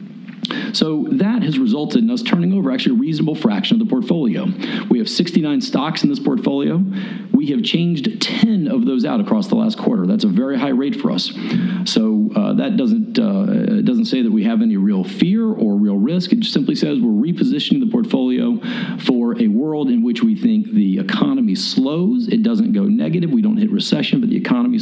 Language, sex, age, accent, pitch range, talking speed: English, male, 40-59, American, 215-240 Hz, 205 wpm